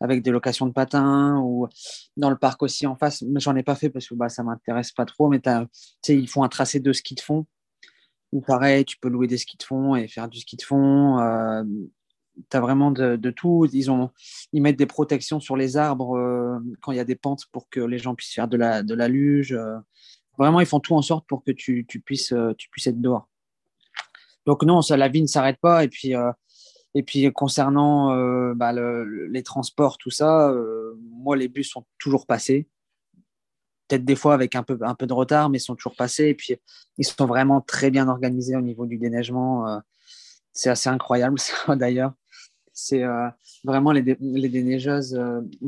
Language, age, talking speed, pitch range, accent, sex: French, 20-39, 220 wpm, 120-140 Hz, French, male